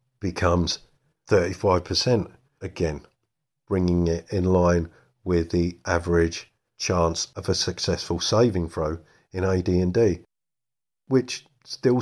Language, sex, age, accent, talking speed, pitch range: English, male, 50-69, British, 100 wpm, 85-105 Hz